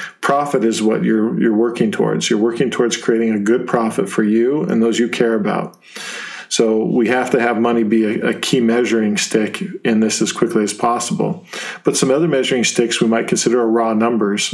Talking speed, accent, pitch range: 200 wpm, American, 110-125 Hz